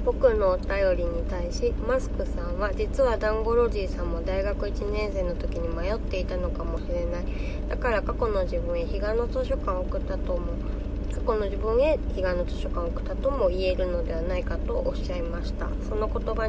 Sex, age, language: female, 20-39, Japanese